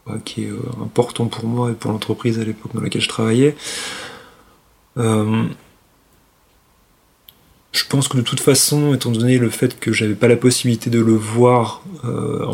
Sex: male